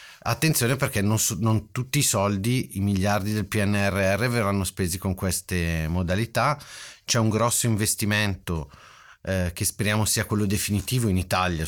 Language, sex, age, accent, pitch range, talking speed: Italian, male, 30-49, native, 80-100 Hz, 145 wpm